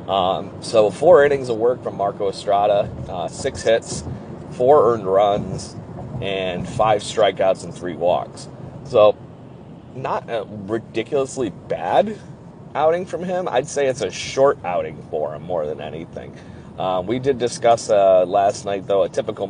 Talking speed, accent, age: 155 wpm, American, 40-59